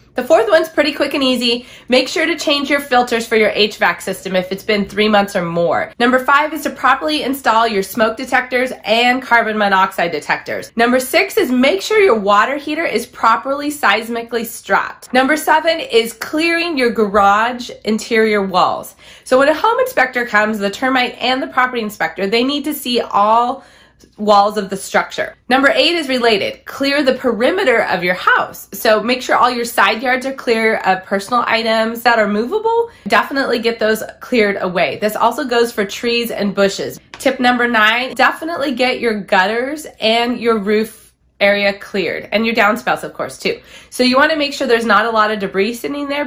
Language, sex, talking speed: English, female, 190 wpm